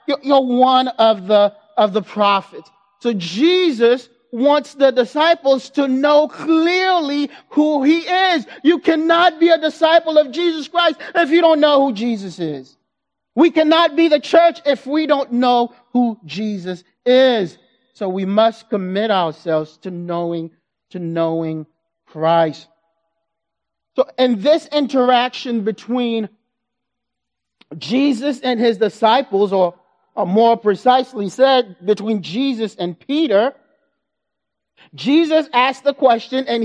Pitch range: 215-295 Hz